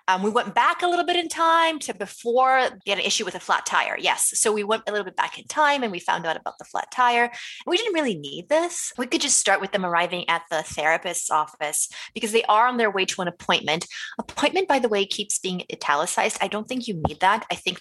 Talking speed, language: 260 wpm, English